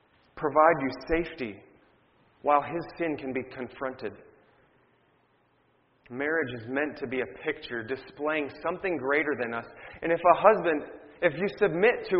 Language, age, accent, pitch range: English, 30-49, American, 135-170 Hz